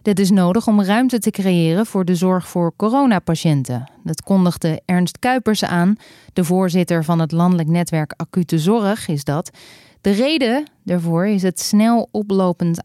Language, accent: Dutch, Dutch